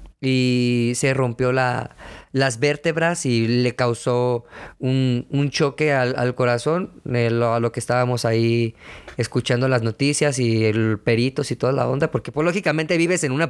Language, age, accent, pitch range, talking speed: Spanish, 20-39, Mexican, 120-145 Hz, 160 wpm